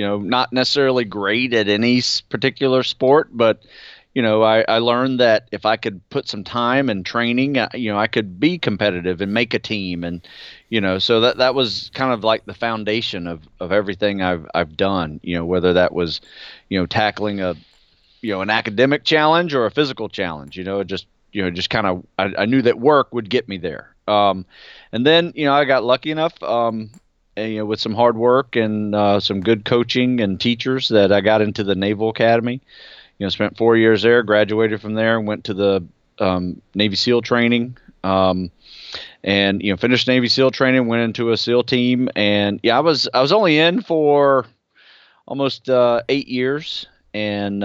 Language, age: English, 30-49